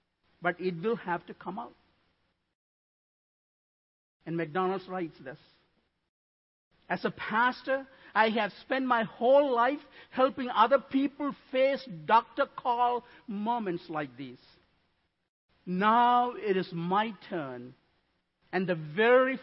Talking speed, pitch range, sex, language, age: 115 wpm, 180-245 Hz, male, English, 50-69